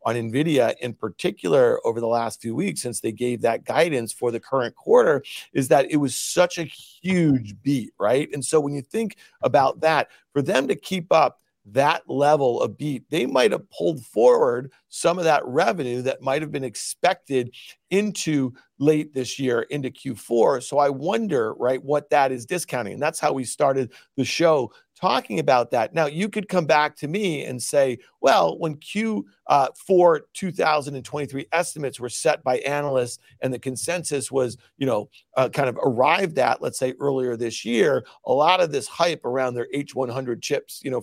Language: English